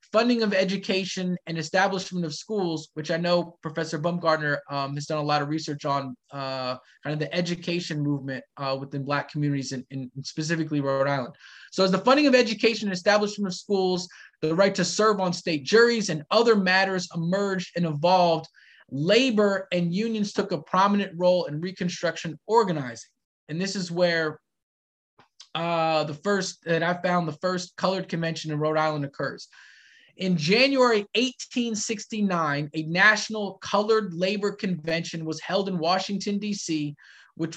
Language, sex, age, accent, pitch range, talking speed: English, male, 20-39, American, 155-200 Hz, 160 wpm